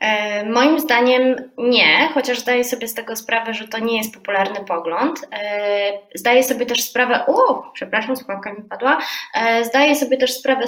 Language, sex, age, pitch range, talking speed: Polish, female, 20-39, 225-265 Hz, 155 wpm